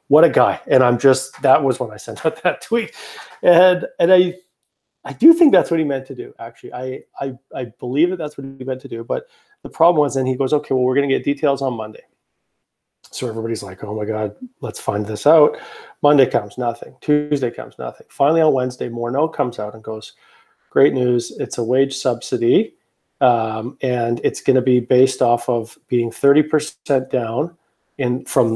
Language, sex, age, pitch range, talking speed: English, male, 40-59, 120-150 Hz, 205 wpm